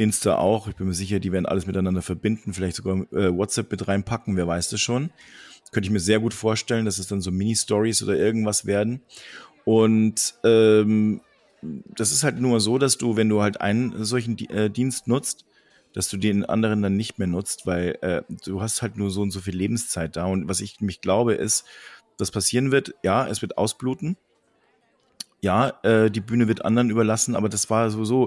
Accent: German